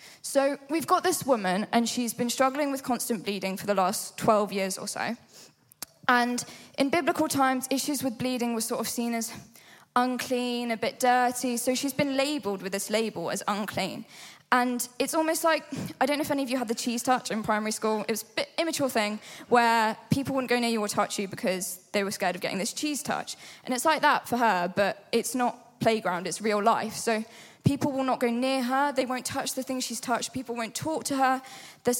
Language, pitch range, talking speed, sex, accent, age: English, 215-265 Hz, 225 wpm, female, British, 10-29